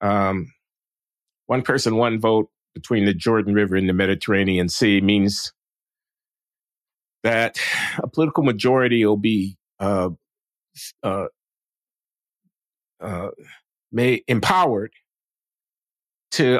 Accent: American